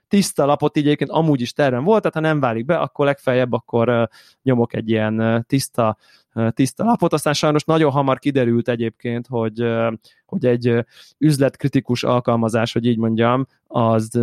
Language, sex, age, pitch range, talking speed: Hungarian, male, 20-39, 115-140 Hz, 155 wpm